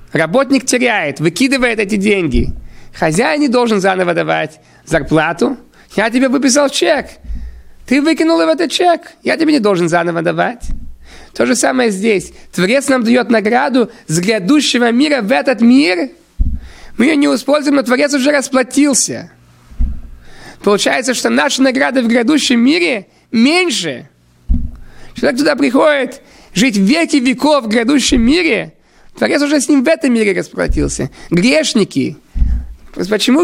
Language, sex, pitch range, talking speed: Russian, male, 210-290 Hz, 135 wpm